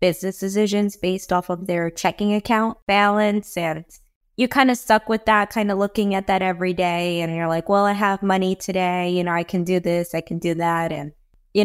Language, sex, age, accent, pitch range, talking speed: English, female, 20-39, American, 175-205 Hz, 220 wpm